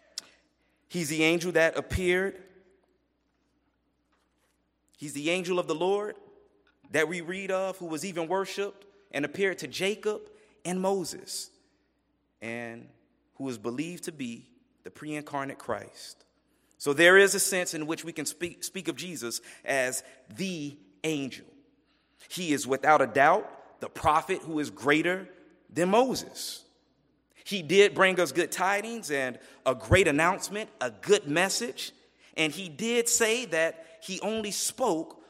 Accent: American